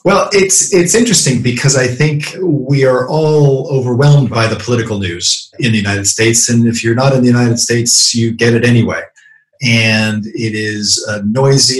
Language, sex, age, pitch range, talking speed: English, male, 40-59, 110-125 Hz, 185 wpm